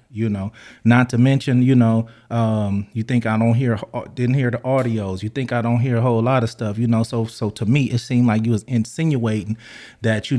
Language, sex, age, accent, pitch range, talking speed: English, male, 30-49, American, 110-125 Hz, 235 wpm